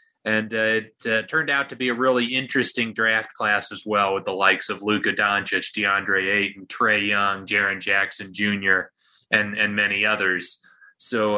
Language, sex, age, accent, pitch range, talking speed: English, male, 30-49, American, 105-130 Hz, 175 wpm